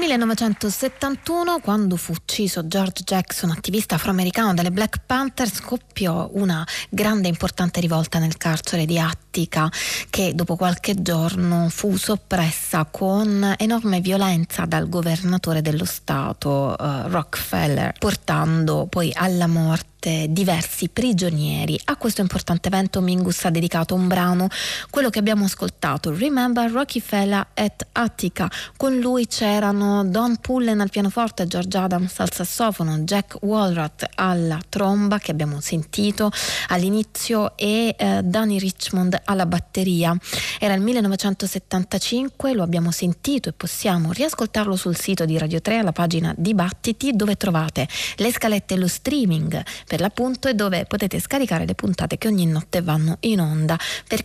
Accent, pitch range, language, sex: native, 175-215 Hz, Italian, female